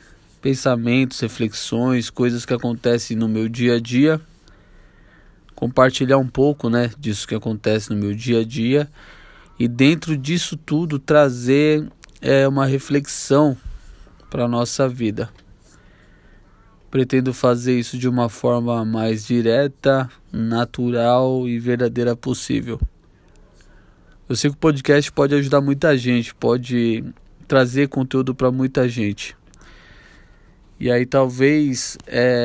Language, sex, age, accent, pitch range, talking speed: Portuguese, male, 20-39, Brazilian, 115-135 Hz, 115 wpm